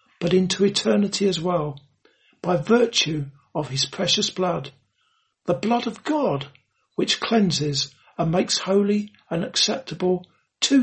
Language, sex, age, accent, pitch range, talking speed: English, male, 60-79, British, 155-215 Hz, 125 wpm